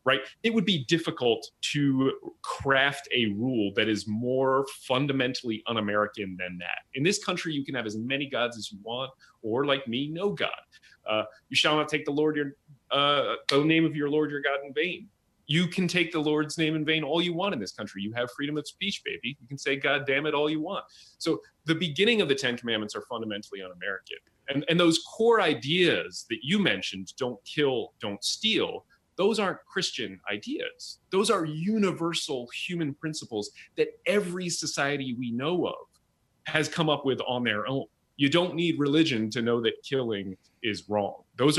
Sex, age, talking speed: male, 30-49, 200 wpm